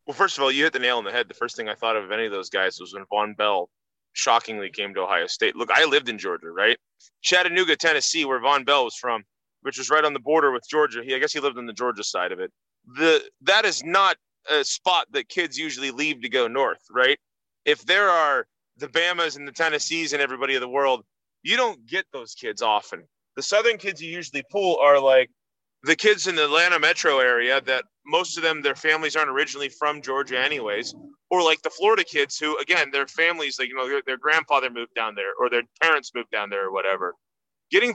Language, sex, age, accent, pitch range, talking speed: English, male, 30-49, American, 135-200 Hz, 235 wpm